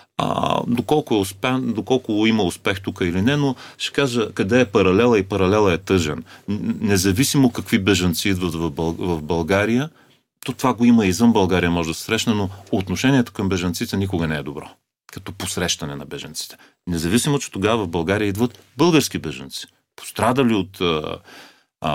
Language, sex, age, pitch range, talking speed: Bulgarian, male, 40-59, 85-115 Hz, 165 wpm